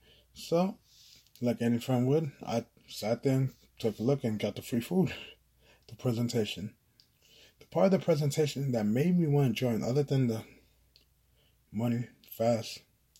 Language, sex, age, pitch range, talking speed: English, male, 20-39, 115-135 Hz, 160 wpm